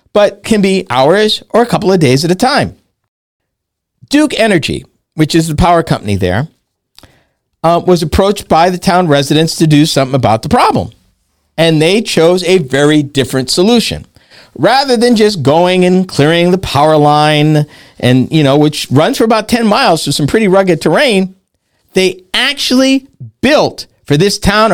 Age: 50-69